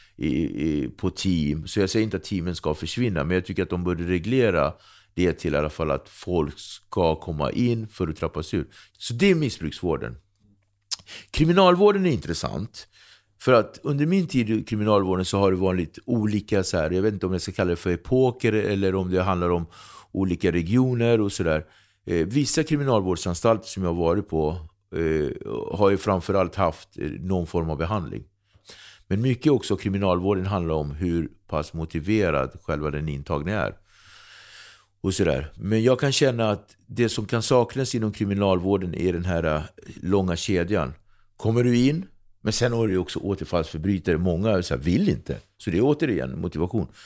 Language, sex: Swedish, male